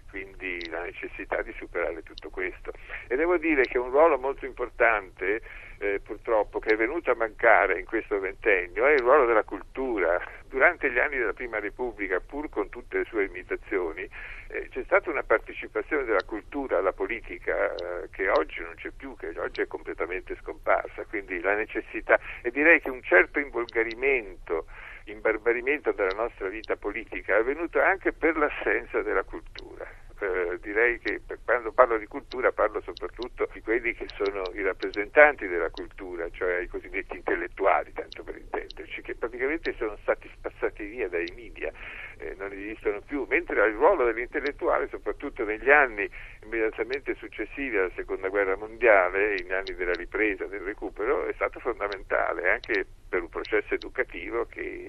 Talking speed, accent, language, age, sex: 160 wpm, native, Italian, 50-69, male